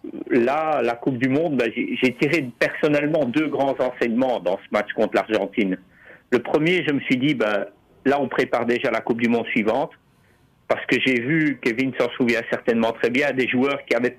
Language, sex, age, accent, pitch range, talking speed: French, male, 50-69, French, 120-155 Hz, 200 wpm